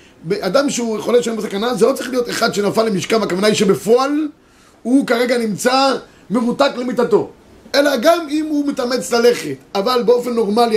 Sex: male